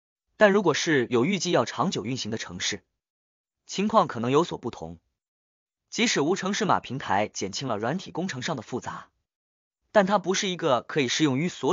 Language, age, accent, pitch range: Chinese, 20-39, native, 125-195 Hz